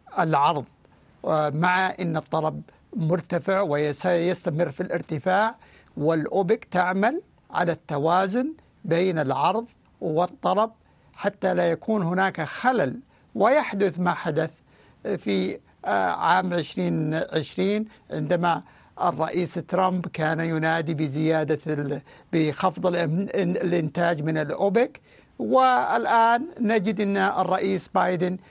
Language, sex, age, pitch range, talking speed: Arabic, male, 60-79, 165-195 Hz, 85 wpm